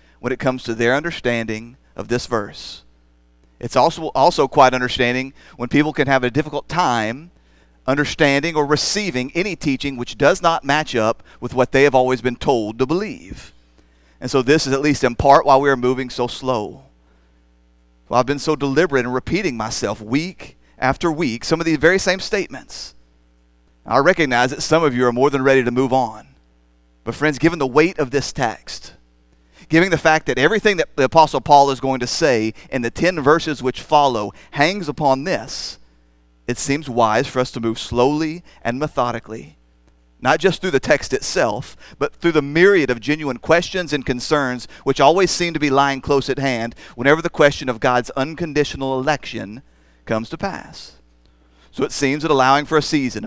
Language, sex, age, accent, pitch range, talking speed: English, male, 40-59, American, 110-150 Hz, 185 wpm